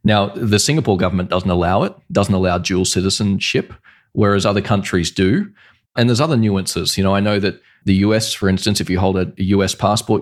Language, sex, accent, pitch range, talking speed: English, male, Australian, 95-110 Hz, 200 wpm